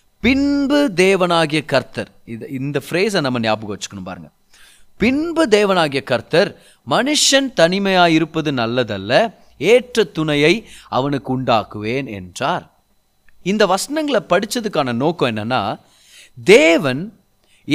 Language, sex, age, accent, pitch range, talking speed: Tamil, male, 30-49, native, 150-245 Hz, 90 wpm